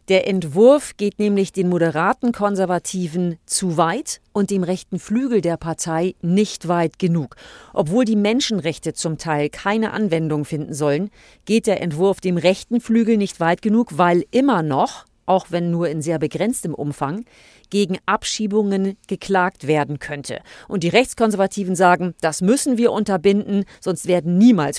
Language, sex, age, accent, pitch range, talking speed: German, female, 40-59, German, 170-200 Hz, 150 wpm